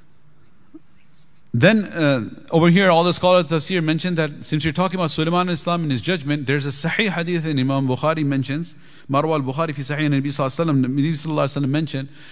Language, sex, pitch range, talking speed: English, male, 135-170 Hz, 170 wpm